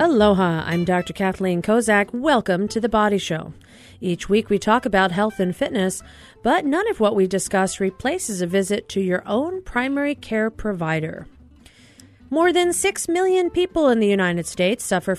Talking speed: 170 wpm